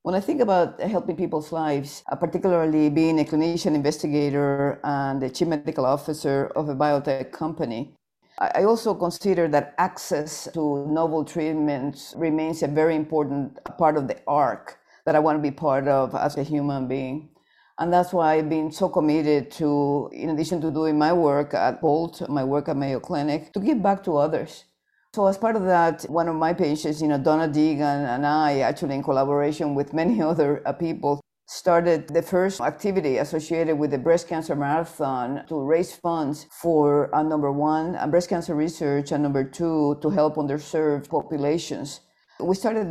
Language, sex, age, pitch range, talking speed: English, female, 50-69, 145-165 Hz, 175 wpm